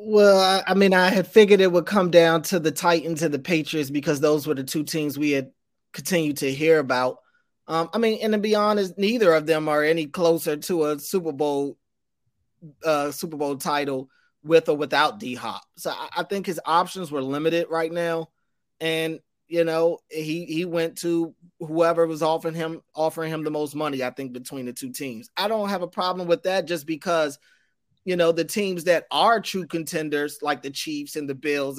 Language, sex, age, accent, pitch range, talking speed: English, male, 30-49, American, 150-180 Hz, 205 wpm